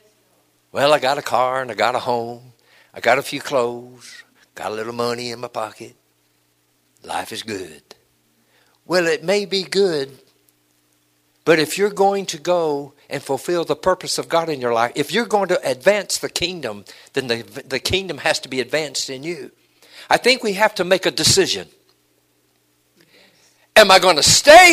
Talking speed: 180 wpm